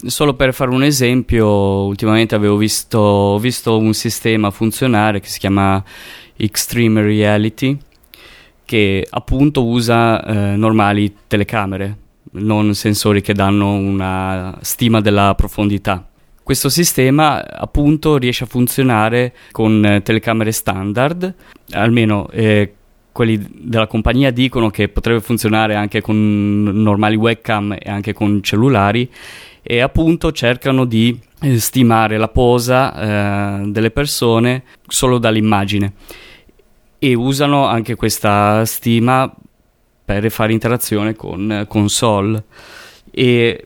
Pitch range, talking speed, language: 105-120 Hz, 110 wpm, Italian